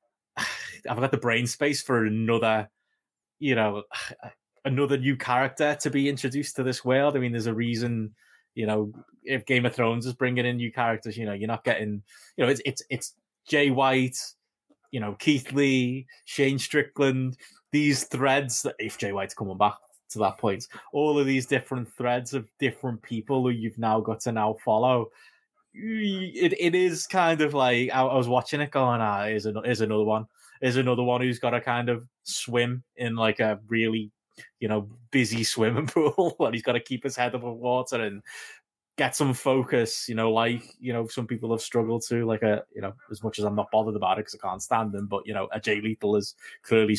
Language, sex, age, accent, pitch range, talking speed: English, male, 20-39, British, 110-135 Hz, 205 wpm